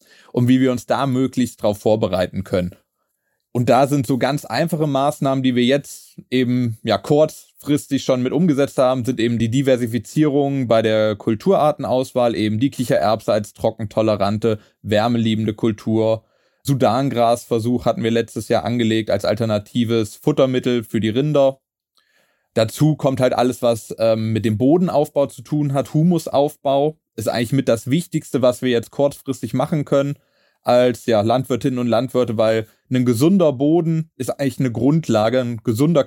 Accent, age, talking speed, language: German, 30-49, 150 wpm, German